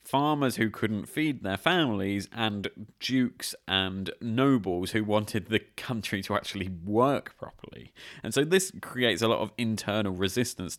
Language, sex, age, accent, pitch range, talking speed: English, male, 30-49, British, 95-130 Hz, 150 wpm